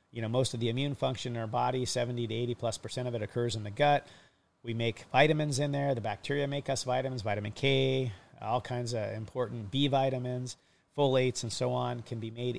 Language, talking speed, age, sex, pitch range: English, 220 wpm, 40-59, male, 115-135 Hz